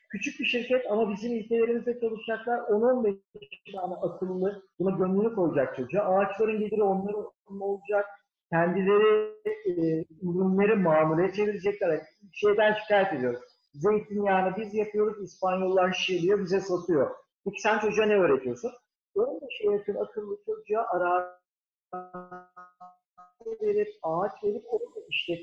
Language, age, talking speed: Turkish, 50-69, 110 wpm